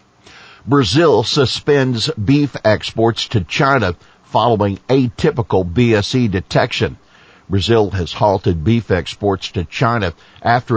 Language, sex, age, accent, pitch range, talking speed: English, male, 60-79, American, 95-120 Hz, 100 wpm